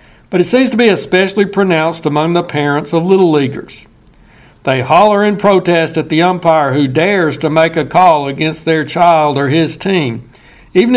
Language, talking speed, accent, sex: English, 180 wpm, American, male